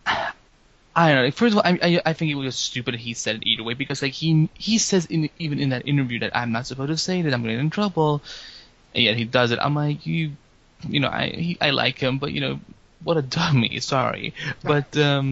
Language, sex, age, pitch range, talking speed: English, male, 20-39, 120-155 Hz, 255 wpm